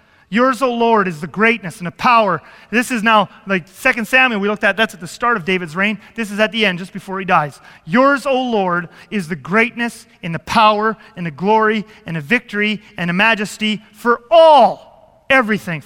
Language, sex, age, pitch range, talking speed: English, male, 30-49, 180-230 Hz, 210 wpm